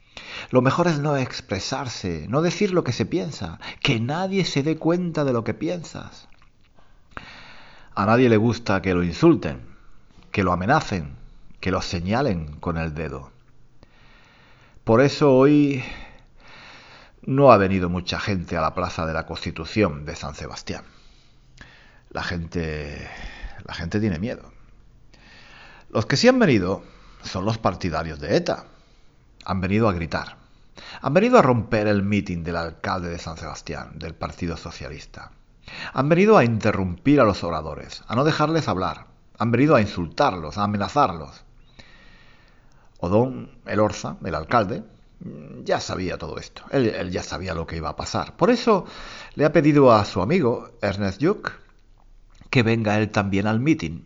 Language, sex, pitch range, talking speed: Spanish, male, 85-130 Hz, 155 wpm